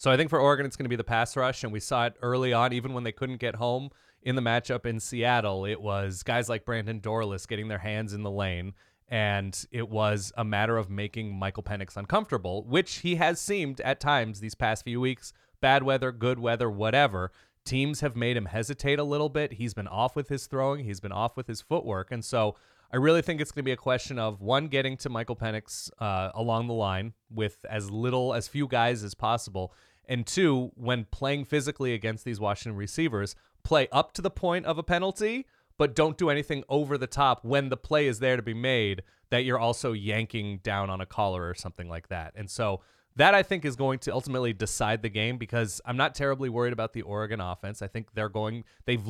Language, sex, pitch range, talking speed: English, male, 105-135 Hz, 225 wpm